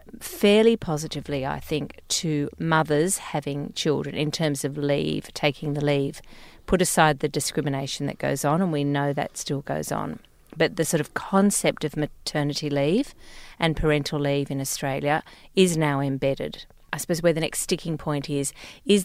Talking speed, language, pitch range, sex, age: 170 wpm, English, 145-180 Hz, female, 40-59